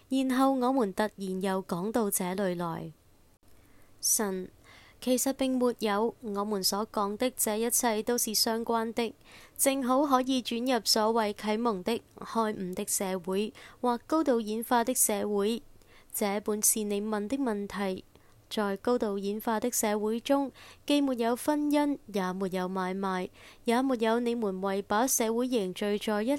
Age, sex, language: 20-39, female, Chinese